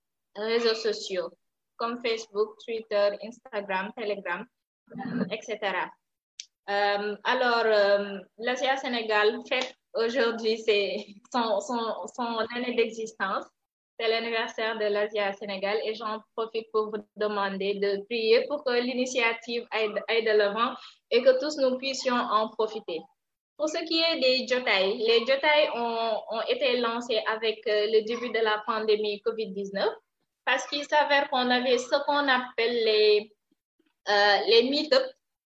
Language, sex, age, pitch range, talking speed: French, female, 20-39, 215-270 Hz, 130 wpm